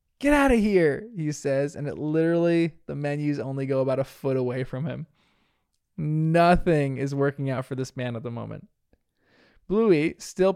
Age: 20-39